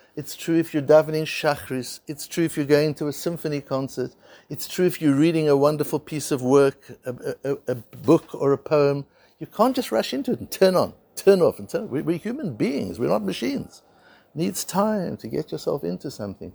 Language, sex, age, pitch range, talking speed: English, male, 60-79, 145-195 Hz, 220 wpm